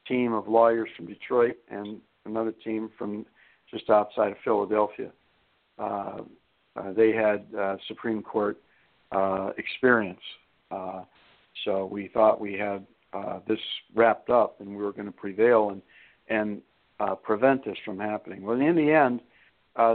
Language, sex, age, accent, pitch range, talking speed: English, male, 60-79, American, 105-120 Hz, 150 wpm